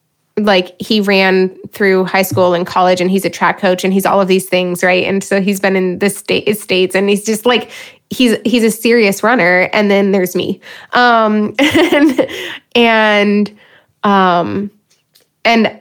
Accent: American